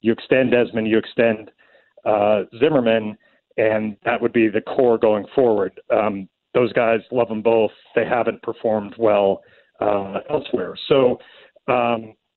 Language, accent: English, American